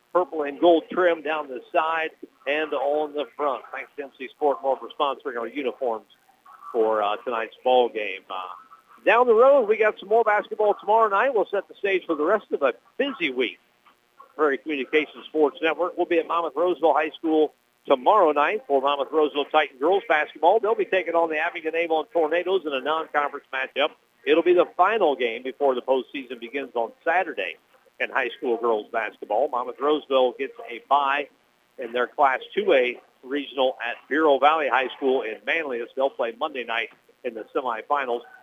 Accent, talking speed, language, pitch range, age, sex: American, 185 wpm, English, 130-175 Hz, 50-69, male